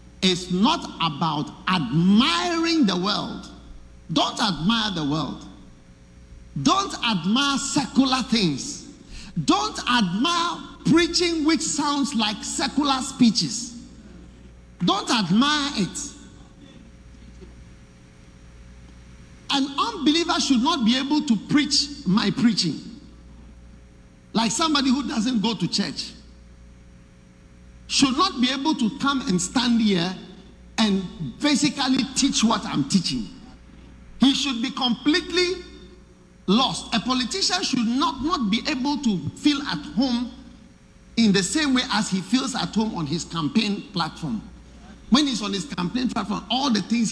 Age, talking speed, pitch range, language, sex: 50-69, 120 wpm, 165-265 Hz, English, male